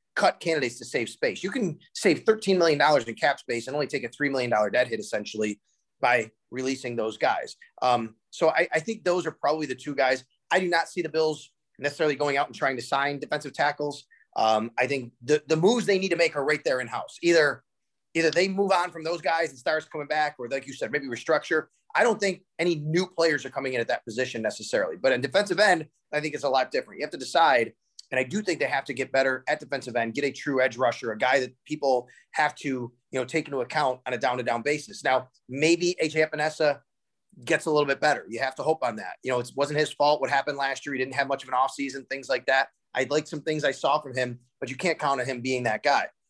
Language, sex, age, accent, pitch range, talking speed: English, male, 30-49, American, 130-160 Hz, 260 wpm